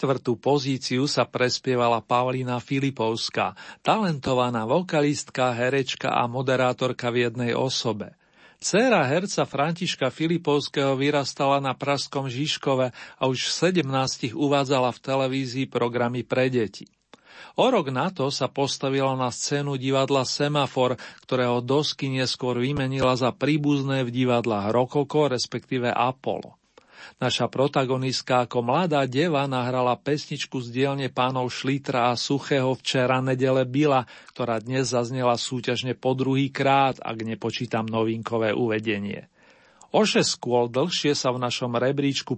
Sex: male